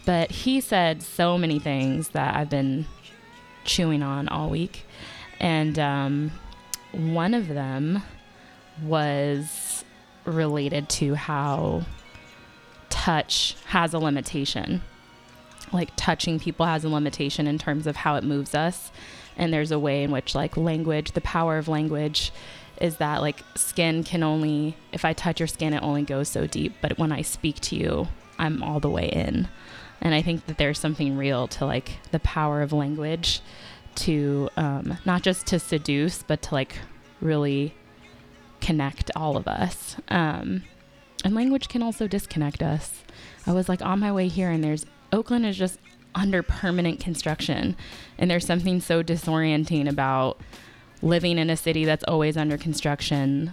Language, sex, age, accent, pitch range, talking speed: English, female, 20-39, American, 145-165 Hz, 160 wpm